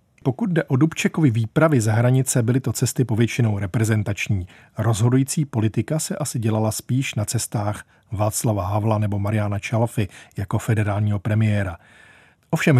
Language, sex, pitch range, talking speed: Czech, male, 110-135 Hz, 135 wpm